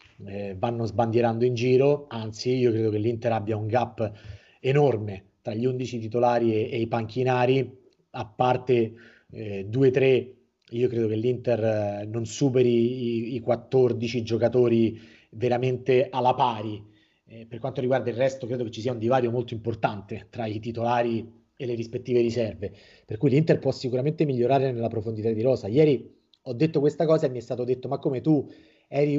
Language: Italian